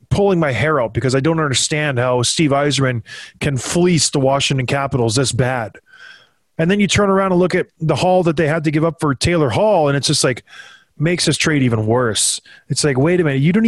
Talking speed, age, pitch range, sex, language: 230 wpm, 30-49, 145-180 Hz, male, English